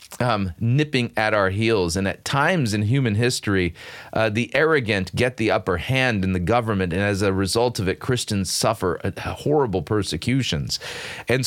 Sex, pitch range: male, 95-120 Hz